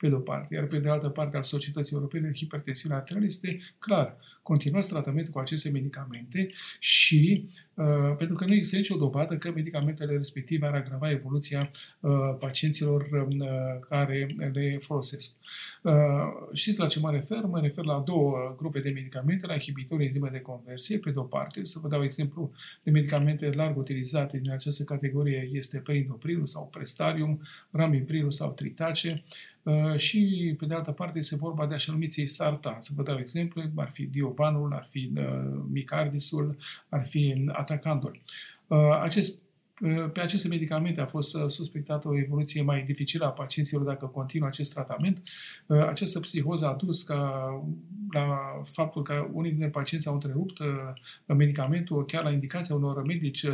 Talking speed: 160 wpm